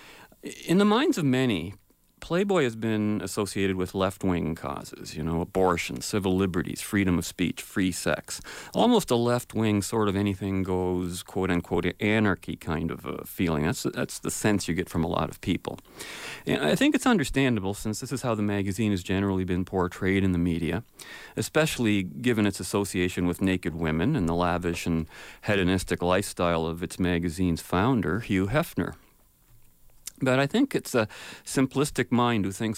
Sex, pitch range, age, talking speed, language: male, 85-105 Hz, 40-59, 165 wpm, English